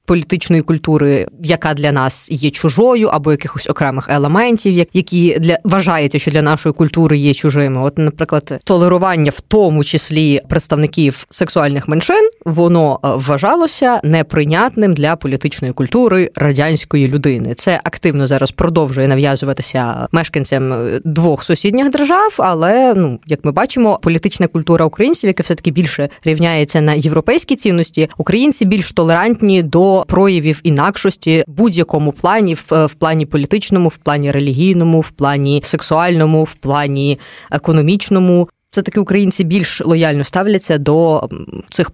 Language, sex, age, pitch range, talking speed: Ukrainian, female, 20-39, 150-185 Hz, 125 wpm